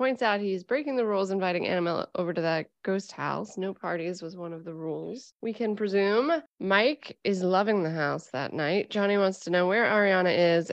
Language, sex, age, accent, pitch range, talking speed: English, female, 20-39, American, 175-225 Hz, 205 wpm